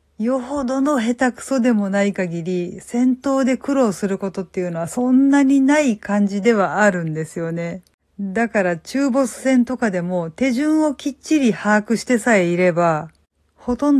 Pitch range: 190-250 Hz